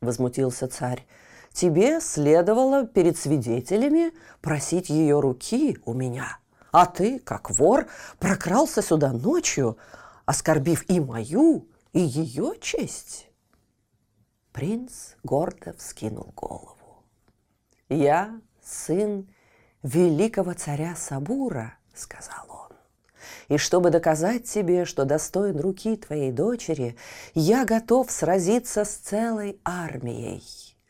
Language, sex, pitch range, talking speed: Russian, female, 125-210 Hz, 95 wpm